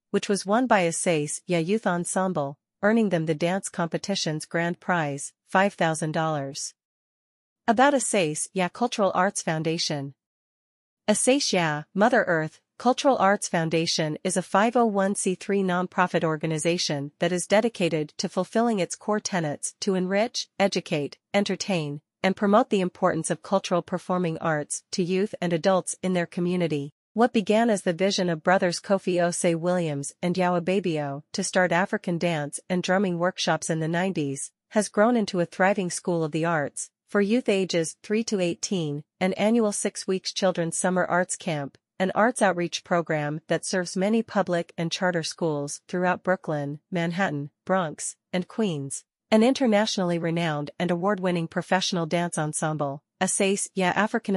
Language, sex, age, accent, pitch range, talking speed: English, female, 40-59, American, 165-195 Hz, 150 wpm